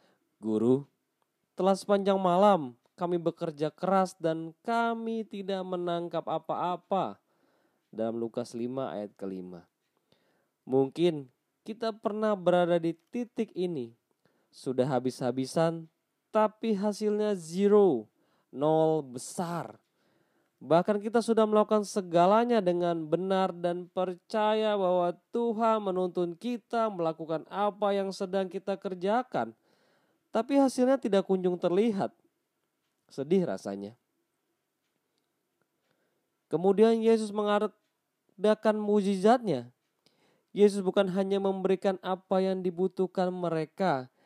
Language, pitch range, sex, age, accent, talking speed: Indonesian, 165-205 Hz, male, 20-39, native, 95 wpm